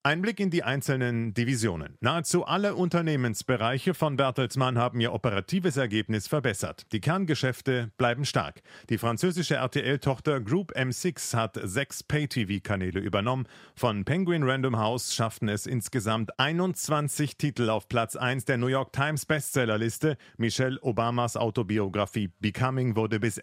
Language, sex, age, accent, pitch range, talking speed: German, male, 40-59, German, 110-140 Hz, 135 wpm